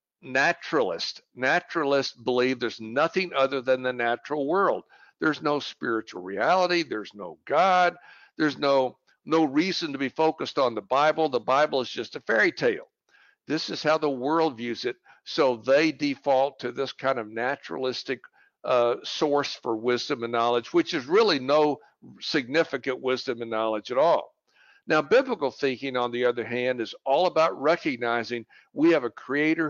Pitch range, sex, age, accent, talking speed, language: 130-160 Hz, male, 60-79, American, 165 wpm, English